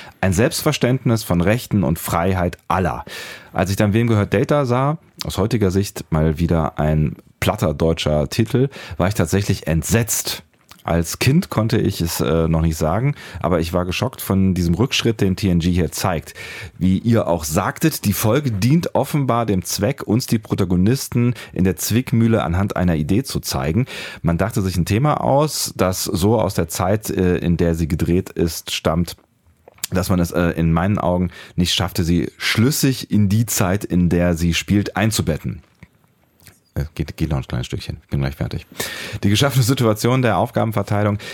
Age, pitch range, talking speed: 30-49, 85-110 Hz, 170 wpm